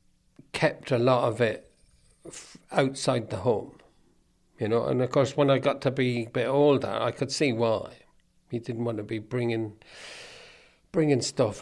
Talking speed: 175 wpm